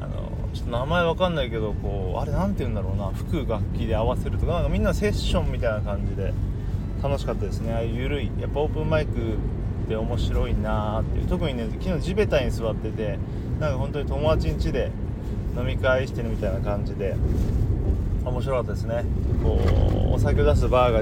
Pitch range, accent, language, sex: 90-115 Hz, native, Japanese, male